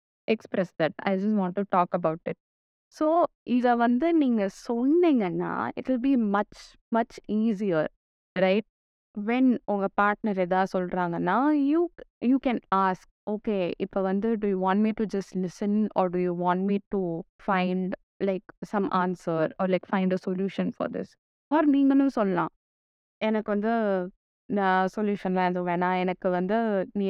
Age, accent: 20-39, native